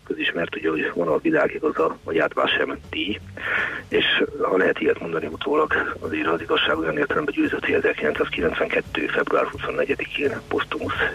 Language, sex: Hungarian, male